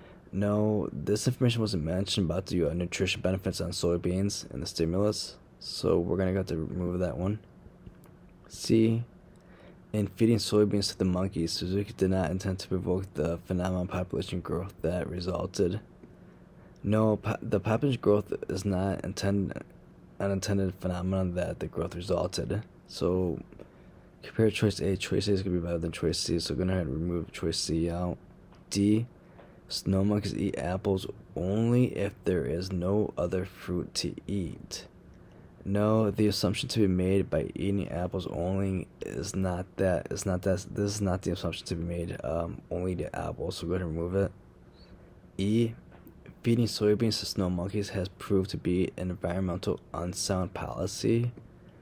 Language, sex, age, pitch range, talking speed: English, male, 20-39, 90-100 Hz, 165 wpm